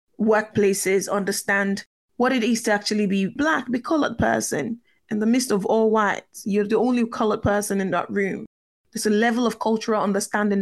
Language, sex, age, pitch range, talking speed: English, female, 20-39, 205-260 Hz, 185 wpm